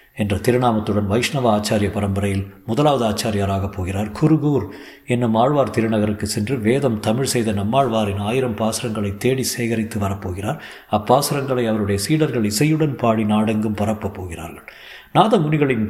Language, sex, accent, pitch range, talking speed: Tamil, male, native, 100-120 Hz, 115 wpm